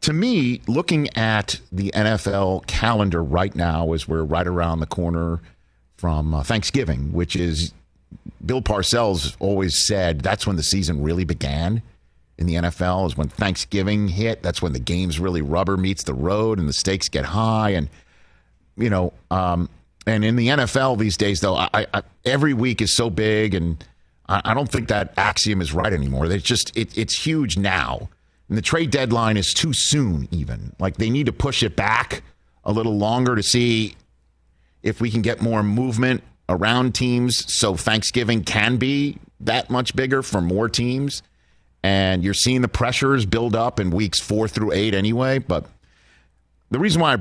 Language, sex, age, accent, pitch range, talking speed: English, male, 50-69, American, 85-115 Hz, 175 wpm